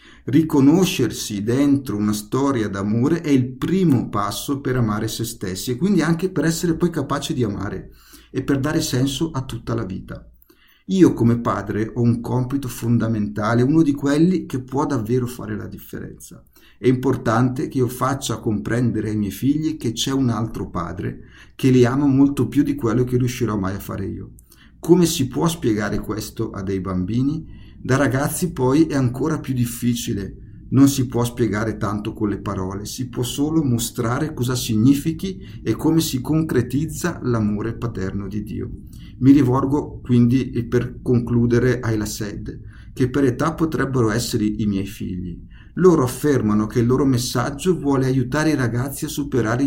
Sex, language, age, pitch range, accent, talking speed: male, Italian, 50-69, 110-140 Hz, native, 165 wpm